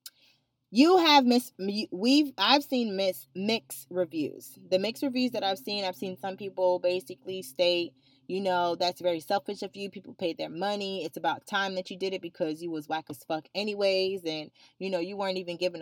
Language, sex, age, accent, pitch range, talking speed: English, female, 20-39, American, 165-195 Hz, 195 wpm